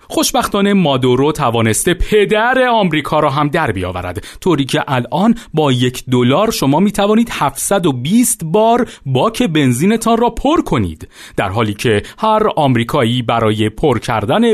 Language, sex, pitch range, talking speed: Persian, male, 120-185 Hz, 130 wpm